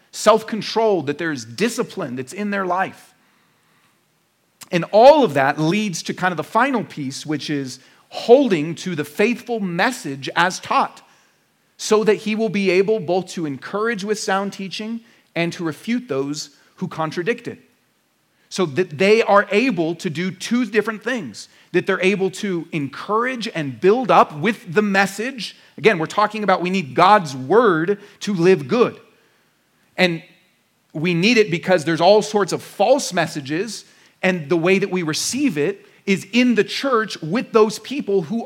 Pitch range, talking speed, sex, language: 175-230 Hz, 165 wpm, male, English